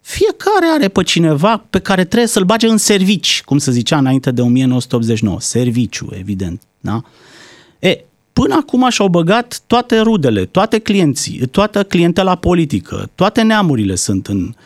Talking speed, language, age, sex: 140 wpm, Romanian, 30-49, male